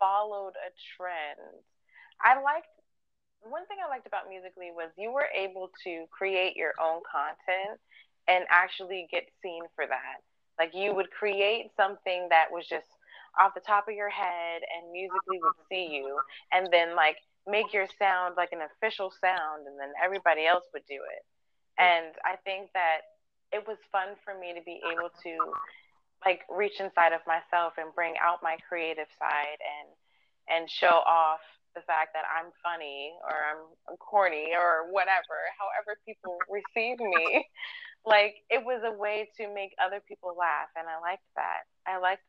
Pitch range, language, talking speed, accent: 160-195 Hz, English, 170 wpm, American